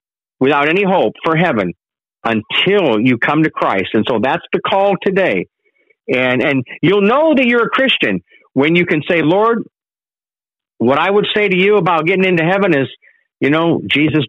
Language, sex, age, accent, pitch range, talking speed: English, male, 50-69, American, 135-190 Hz, 180 wpm